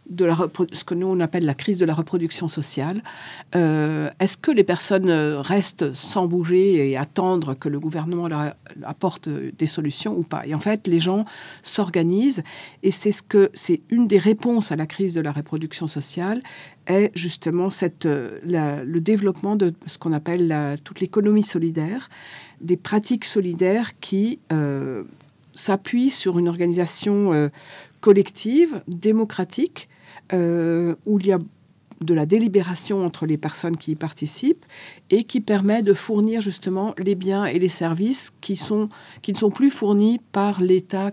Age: 50-69